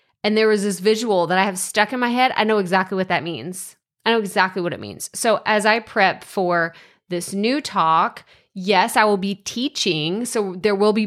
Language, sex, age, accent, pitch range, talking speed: English, female, 20-39, American, 180-225 Hz, 220 wpm